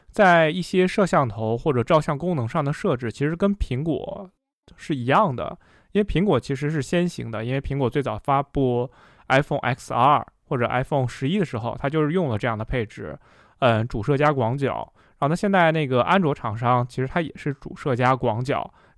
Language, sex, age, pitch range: Chinese, male, 20-39, 125-165 Hz